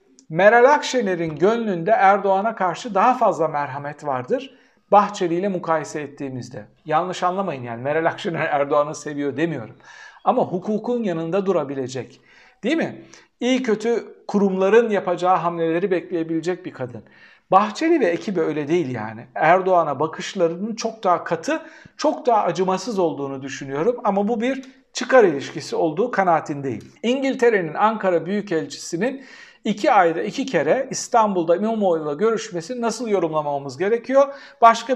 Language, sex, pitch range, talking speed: Turkish, male, 160-230 Hz, 125 wpm